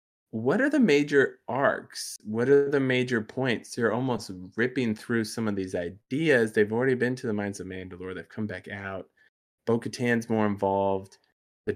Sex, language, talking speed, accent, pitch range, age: male, English, 175 wpm, American, 100-125 Hz, 20-39